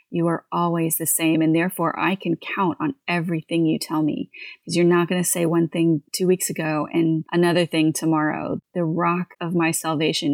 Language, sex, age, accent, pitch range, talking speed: English, female, 30-49, American, 160-185 Hz, 205 wpm